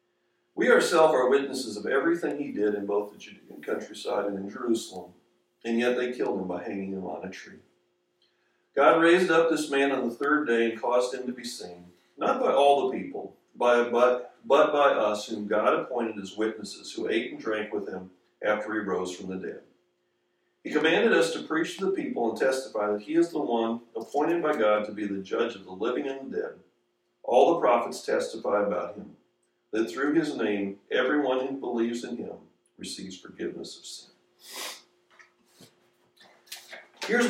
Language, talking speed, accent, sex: English, 185 wpm, American, male